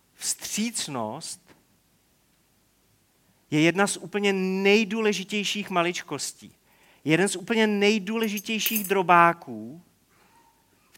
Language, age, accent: Czech, 40-59, native